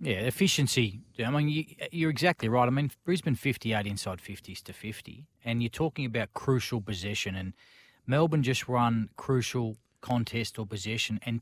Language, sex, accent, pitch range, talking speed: English, male, Australian, 110-125 Hz, 160 wpm